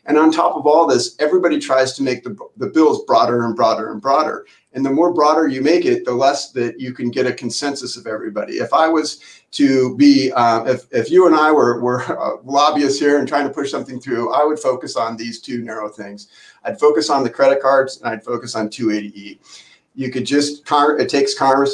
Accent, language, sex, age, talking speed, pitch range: American, English, male, 40-59, 225 wpm, 120-150 Hz